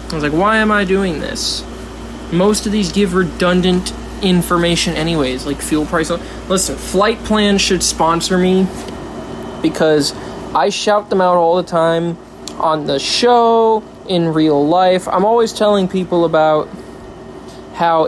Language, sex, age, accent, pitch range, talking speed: English, male, 20-39, American, 125-190 Hz, 145 wpm